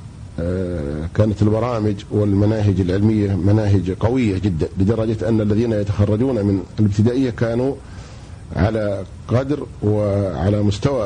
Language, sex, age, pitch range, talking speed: Arabic, male, 50-69, 100-120 Hz, 100 wpm